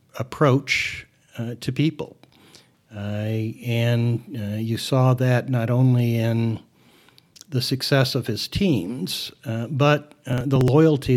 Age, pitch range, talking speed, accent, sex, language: 60-79, 115-140 Hz, 125 wpm, American, male, English